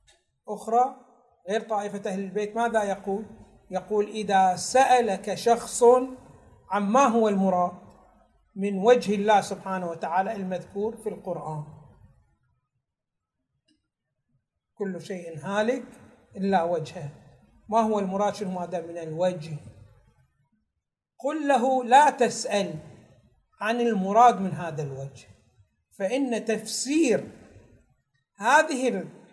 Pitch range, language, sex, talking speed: 165-235 Hz, Arabic, male, 95 wpm